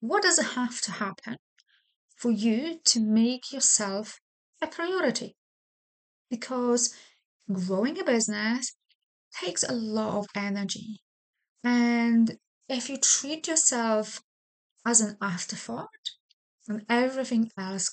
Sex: female